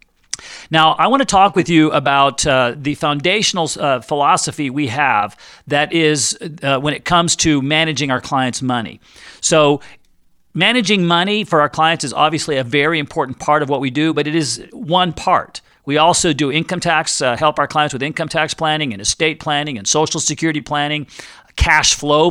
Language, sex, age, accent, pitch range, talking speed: English, male, 50-69, American, 135-165 Hz, 185 wpm